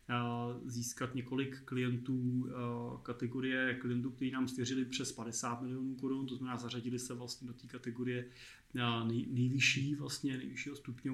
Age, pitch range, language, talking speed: 30-49, 120-130 Hz, Czech, 130 wpm